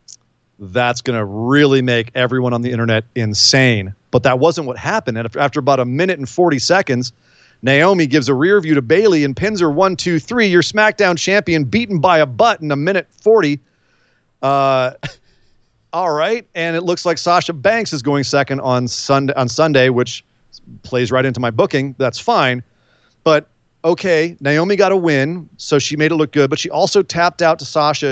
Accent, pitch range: American, 125-175 Hz